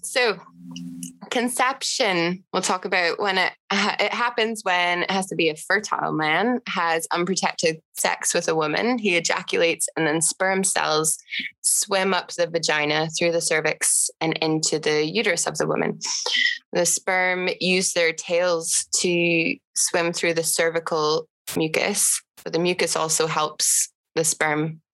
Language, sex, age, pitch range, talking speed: English, female, 20-39, 155-185 Hz, 150 wpm